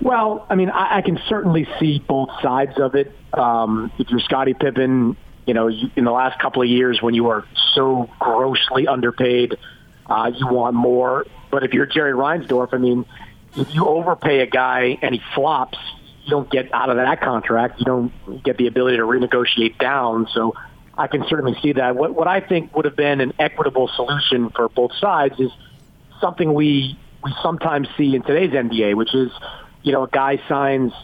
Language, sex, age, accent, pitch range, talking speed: English, male, 40-59, American, 125-145 Hz, 195 wpm